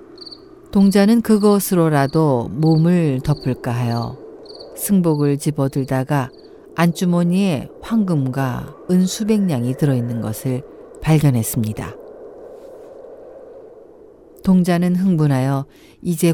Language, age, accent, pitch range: Korean, 50-69, native, 130-175 Hz